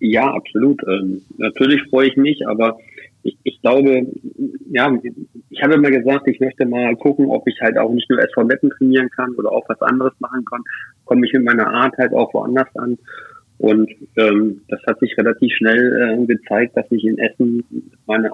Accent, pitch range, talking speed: German, 110-125 Hz, 195 wpm